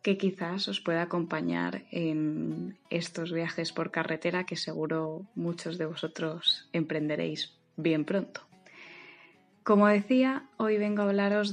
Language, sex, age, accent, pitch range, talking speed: Spanish, female, 20-39, Spanish, 165-195 Hz, 125 wpm